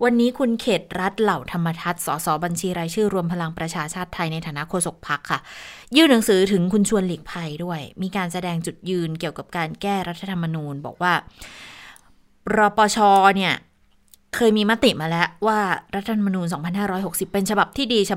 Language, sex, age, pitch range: Thai, female, 20-39, 170-215 Hz